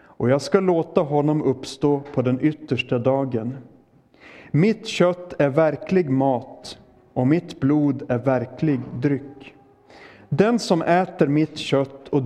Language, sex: Swedish, male